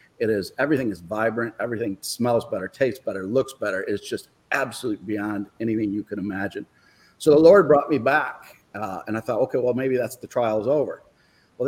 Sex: male